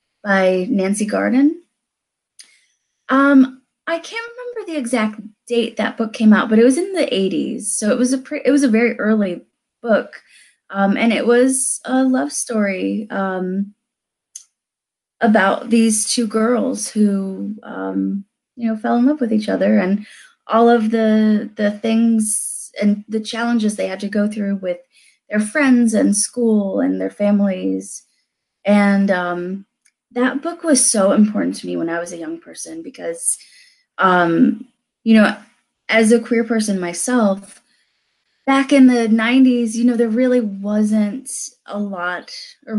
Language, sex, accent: English, female, American